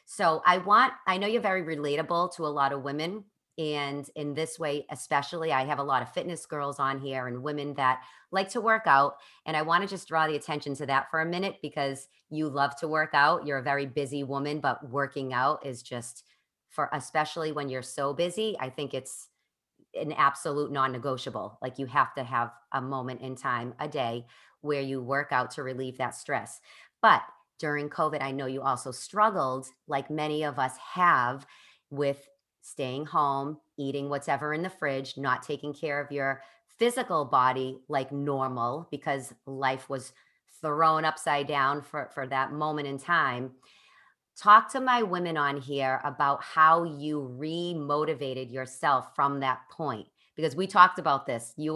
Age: 30-49